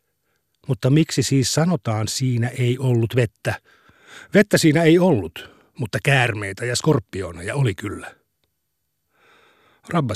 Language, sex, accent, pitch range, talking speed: Finnish, male, native, 120-155 Hz, 120 wpm